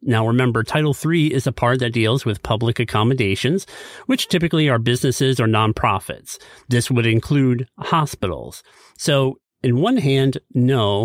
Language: English